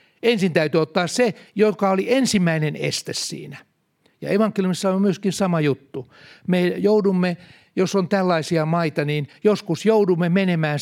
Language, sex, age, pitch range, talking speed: Finnish, male, 60-79, 150-205 Hz, 140 wpm